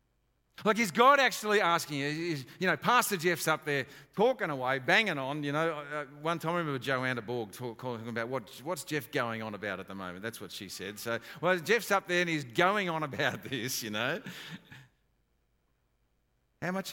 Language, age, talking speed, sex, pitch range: English, 50-69, 200 wpm, male, 95-145 Hz